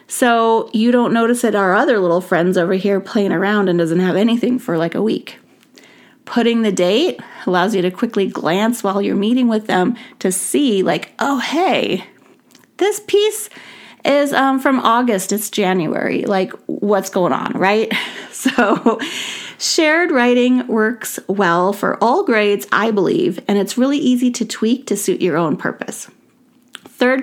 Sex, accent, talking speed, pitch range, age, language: female, American, 165 wpm, 195-255 Hz, 30-49, English